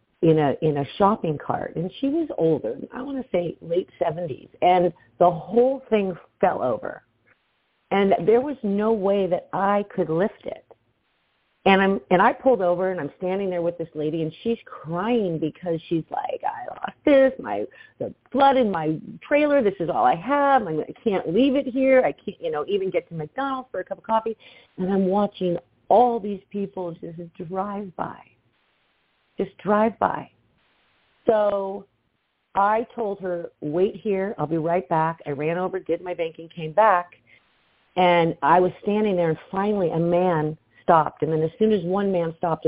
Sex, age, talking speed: female, 50-69, 185 wpm